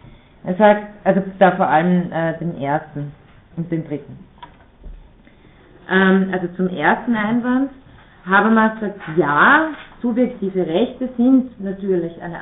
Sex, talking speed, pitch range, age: female, 120 wpm, 165-220 Hz, 30-49